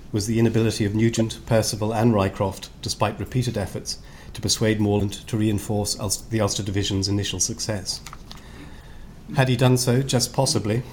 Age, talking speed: 40-59, 150 wpm